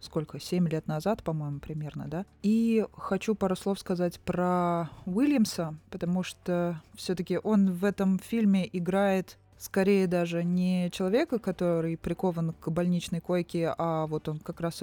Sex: female